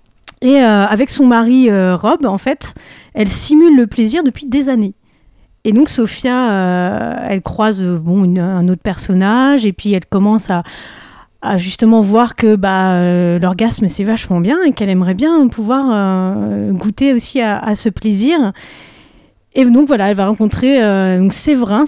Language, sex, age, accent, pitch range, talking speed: French, female, 30-49, French, 195-245 Hz, 175 wpm